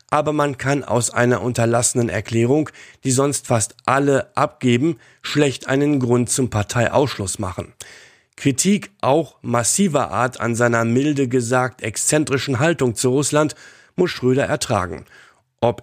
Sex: male